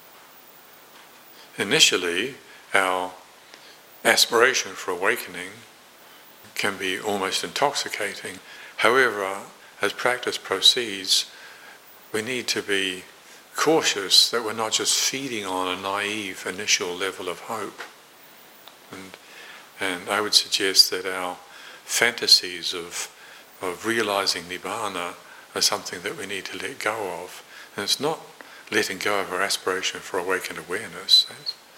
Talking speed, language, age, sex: 120 wpm, English, 60-79, male